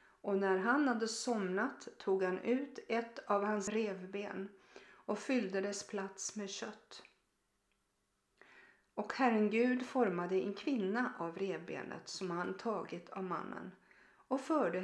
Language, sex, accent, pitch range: Swedish, female, native, 190-240 Hz